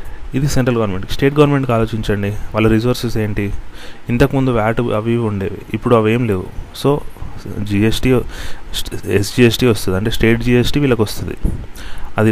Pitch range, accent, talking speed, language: 100-120 Hz, native, 135 wpm, Telugu